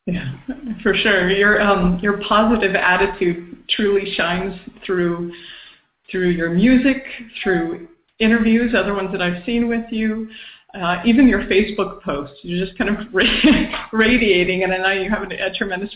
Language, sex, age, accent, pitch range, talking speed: English, female, 40-59, American, 175-210 Hz, 150 wpm